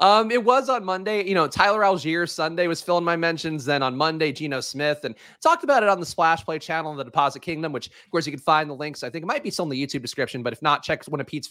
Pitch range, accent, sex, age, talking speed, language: 140-200 Hz, American, male, 30-49, 295 wpm, English